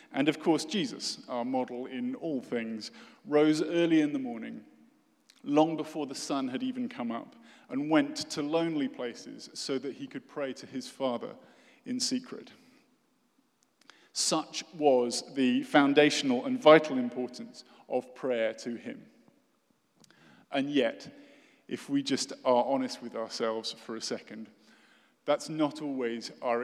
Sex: male